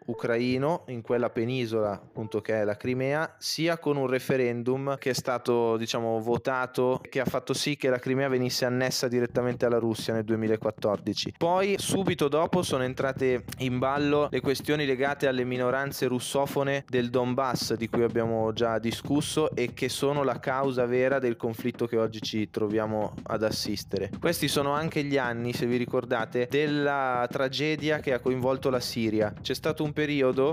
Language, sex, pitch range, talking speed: Italian, male, 120-140 Hz, 165 wpm